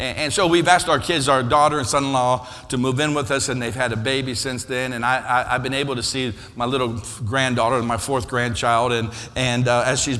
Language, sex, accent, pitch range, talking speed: English, male, American, 115-150 Hz, 245 wpm